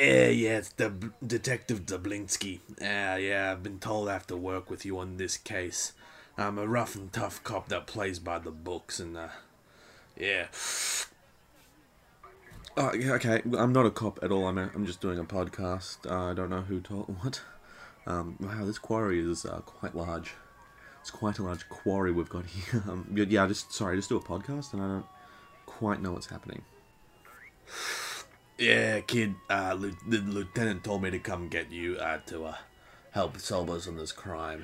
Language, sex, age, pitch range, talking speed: English, male, 30-49, 90-105 Hz, 195 wpm